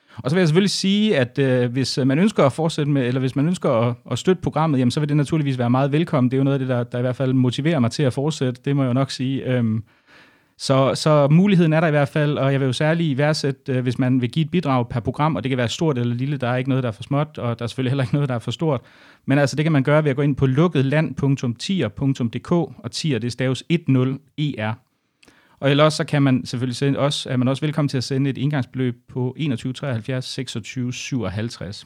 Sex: male